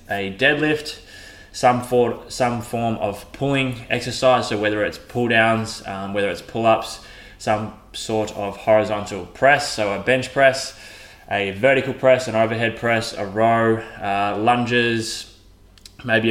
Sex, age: male, 20-39